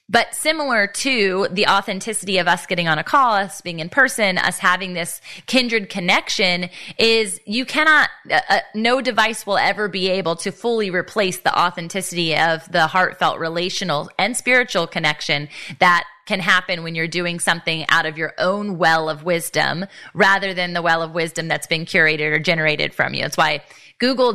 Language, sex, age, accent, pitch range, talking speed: English, female, 20-39, American, 175-230 Hz, 180 wpm